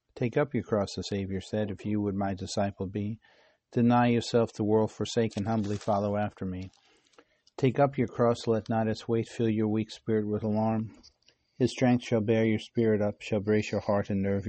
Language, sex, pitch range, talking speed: English, male, 100-115 Hz, 205 wpm